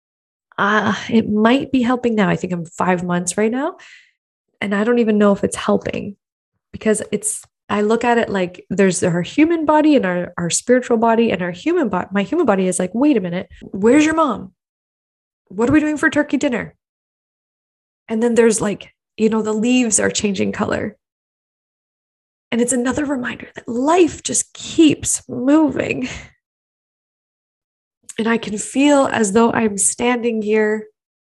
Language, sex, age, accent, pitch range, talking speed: English, female, 20-39, American, 210-255 Hz, 170 wpm